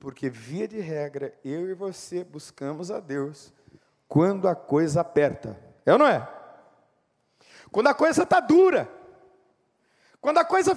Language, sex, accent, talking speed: Spanish, male, Brazilian, 145 wpm